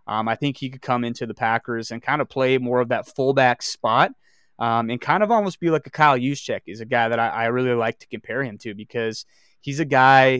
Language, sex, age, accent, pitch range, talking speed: English, male, 20-39, American, 120-140 Hz, 255 wpm